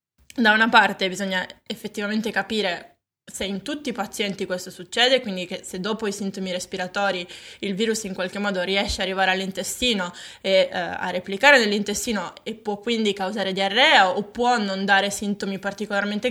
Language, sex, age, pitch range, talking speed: Italian, female, 20-39, 190-230 Hz, 165 wpm